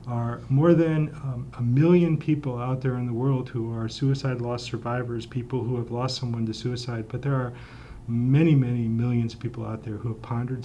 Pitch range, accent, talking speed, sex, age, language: 120-135 Hz, American, 210 wpm, male, 40-59, English